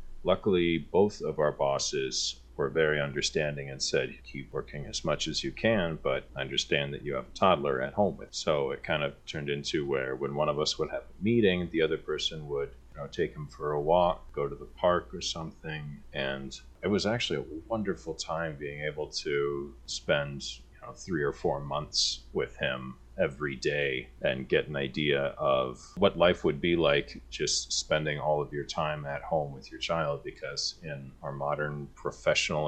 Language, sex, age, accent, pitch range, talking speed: English, male, 30-49, American, 65-75 Hz, 195 wpm